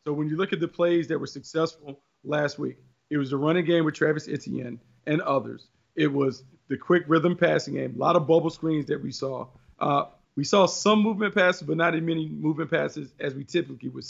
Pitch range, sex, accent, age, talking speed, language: 150-185 Hz, male, American, 40-59, 225 wpm, English